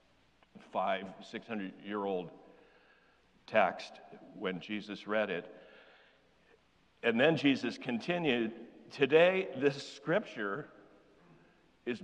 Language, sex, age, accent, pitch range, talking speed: English, male, 60-79, American, 110-135 Hz, 75 wpm